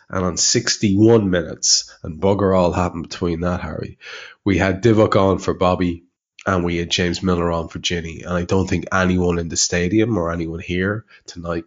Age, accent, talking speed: 20-39, Irish, 190 wpm